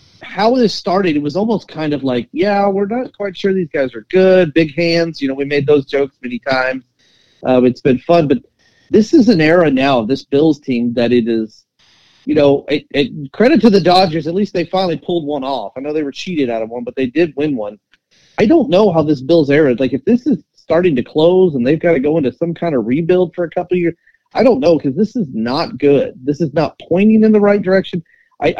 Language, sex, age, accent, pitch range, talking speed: English, male, 40-59, American, 140-195 Hz, 245 wpm